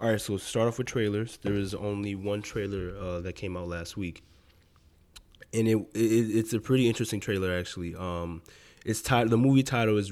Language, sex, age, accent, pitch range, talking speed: English, male, 20-39, American, 90-110 Hz, 200 wpm